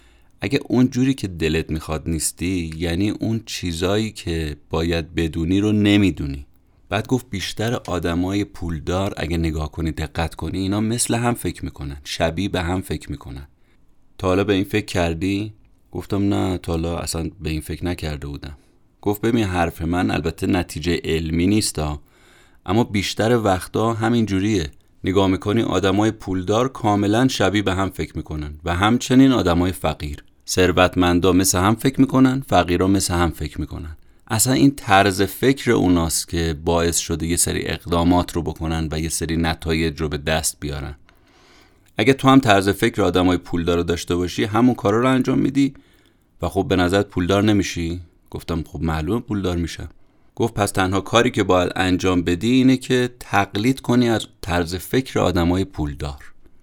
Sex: male